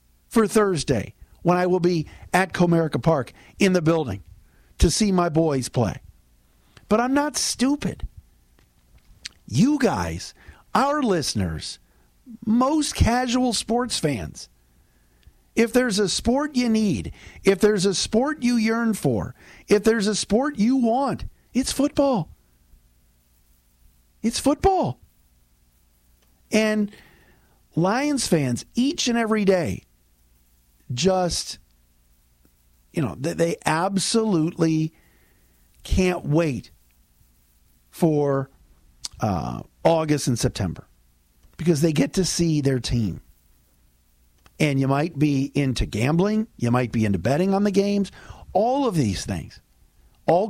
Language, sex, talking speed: English, male, 115 wpm